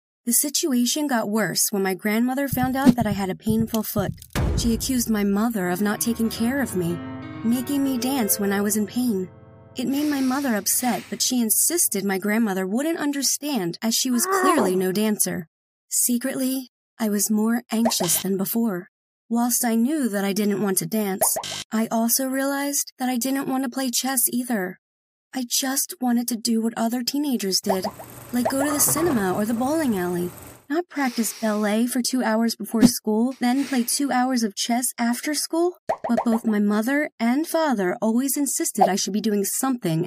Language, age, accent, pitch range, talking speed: English, 30-49, American, 205-255 Hz, 185 wpm